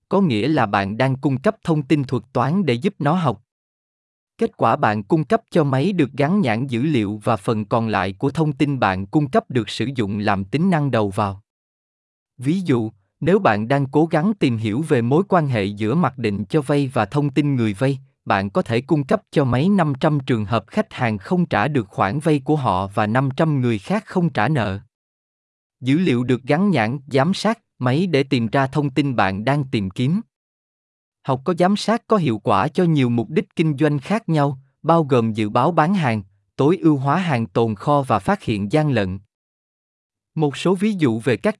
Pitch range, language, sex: 110-160 Hz, Vietnamese, male